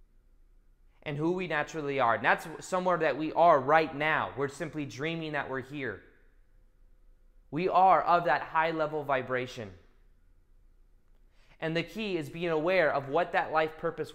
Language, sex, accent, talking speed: English, male, American, 155 wpm